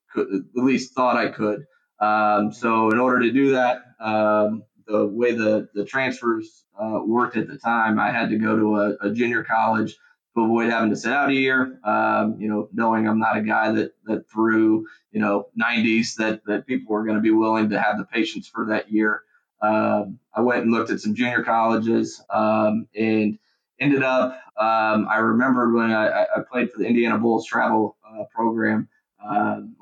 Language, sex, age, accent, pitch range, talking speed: English, male, 20-39, American, 105-115 Hz, 195 wpm